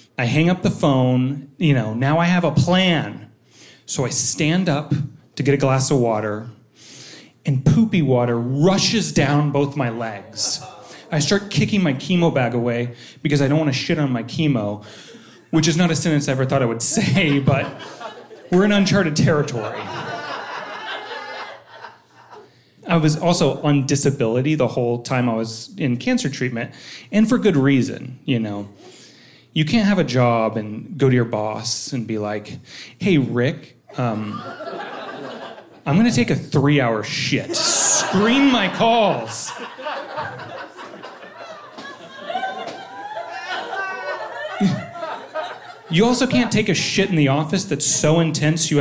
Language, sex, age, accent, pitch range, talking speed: English, male, 30-49, American, 125-170 Hz, 150 wpm